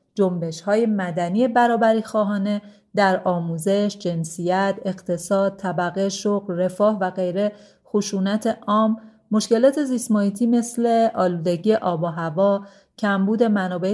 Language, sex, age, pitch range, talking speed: Persian, female, 30-49, 180-215 Hz, 105 wpm